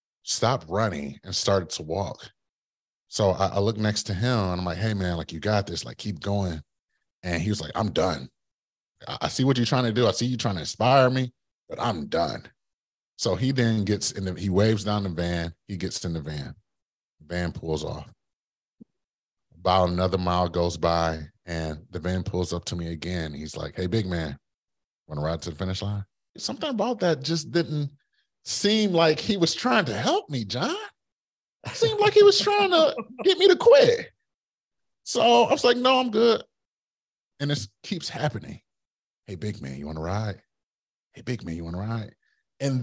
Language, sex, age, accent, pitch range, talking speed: English, male, 30-49, American, 90-150 Hz, 200 wpm